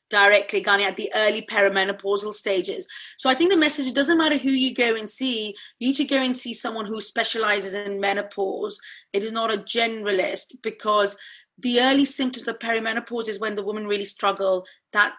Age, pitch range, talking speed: 30-49, 200-245 Hz, 190 wpm